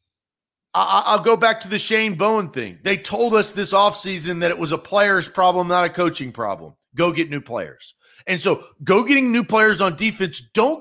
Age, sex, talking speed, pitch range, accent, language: 40-59, male, 200 wpm, 175-230 Hz, American, English